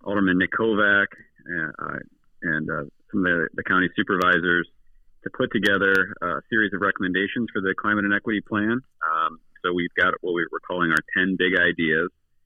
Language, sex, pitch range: English, male, 80-100 Hz